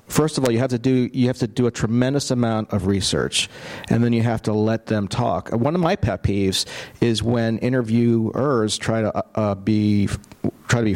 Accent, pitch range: American, 105-125 Hz